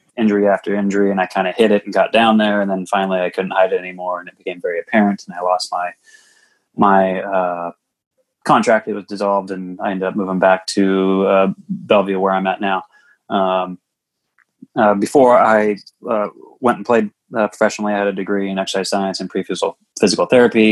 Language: English